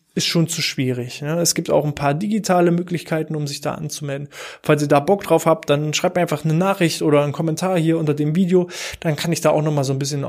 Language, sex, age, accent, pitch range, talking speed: German, male, 20-39, German, 155-200 Hz, 250 wpm